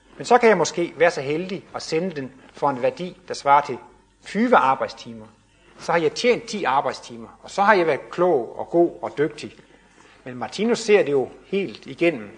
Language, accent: Danish, native